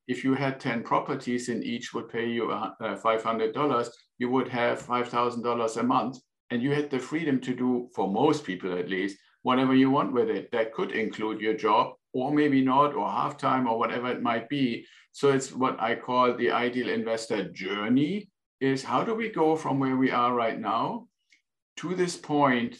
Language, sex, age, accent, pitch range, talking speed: English, male, 50-69, German, 115-135 Hz, 190 wpm